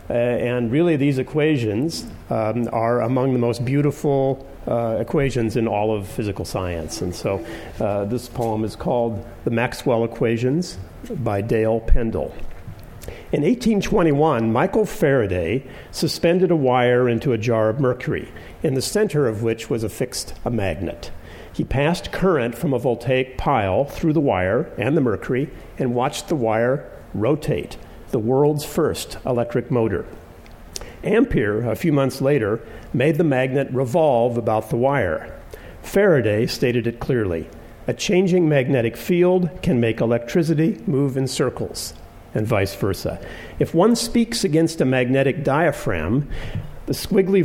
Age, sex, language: 50-69, male, English